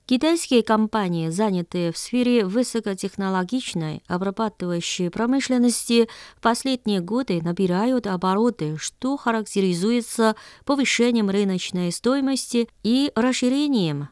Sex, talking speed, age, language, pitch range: female, 85 wpm, 30-49, Russian, 175-235 Hz